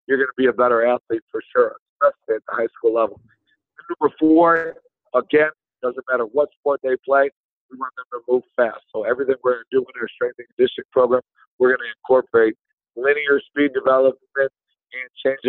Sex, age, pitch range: male, 50-69, 130-165 Hz